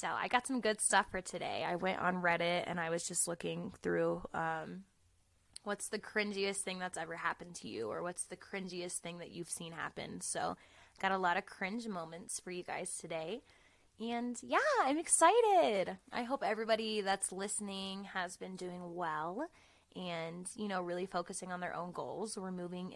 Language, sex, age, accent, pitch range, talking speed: English, female, 20-39, American, 175-220 Hz, 190 wpm